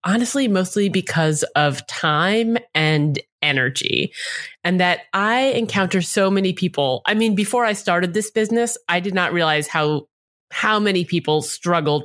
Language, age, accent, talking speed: English, 20-39, American, 150 wpm